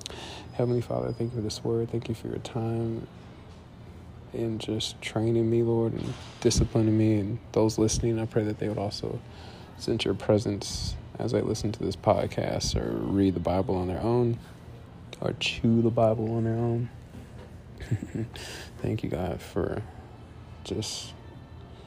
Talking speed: 155 wpm